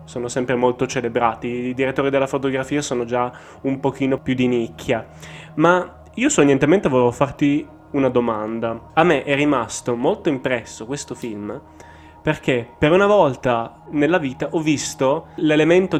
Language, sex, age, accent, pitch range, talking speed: Italian, male, 20-39, native, 120-145 Hz, 145 wpm